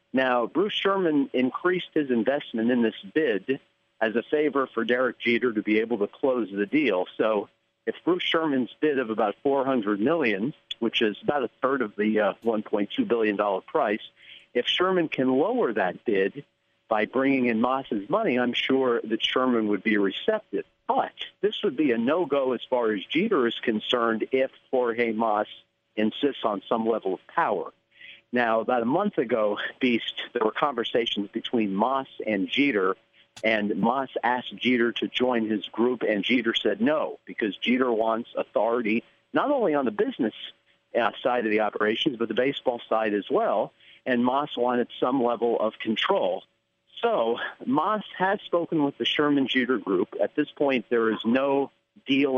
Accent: American